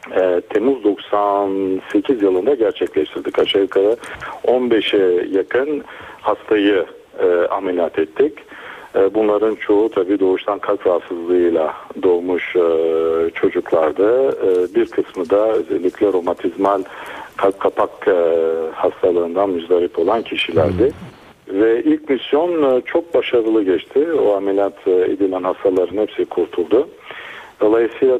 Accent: native